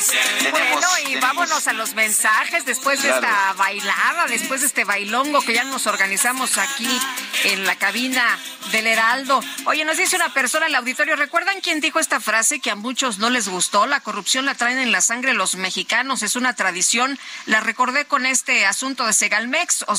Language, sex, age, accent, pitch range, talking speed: Spanish, female, 40-59, Mexican, 195-255 Hz, 185 wpm